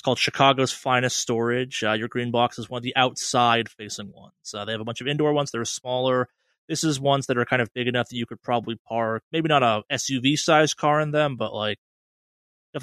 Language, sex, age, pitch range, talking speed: English, male, 20-39, 115-145 Hz, 230 wpm